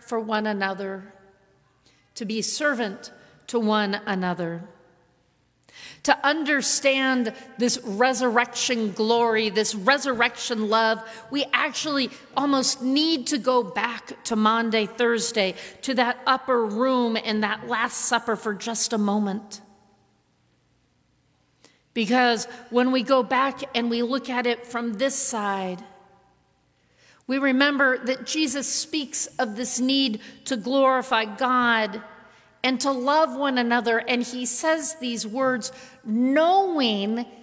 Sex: female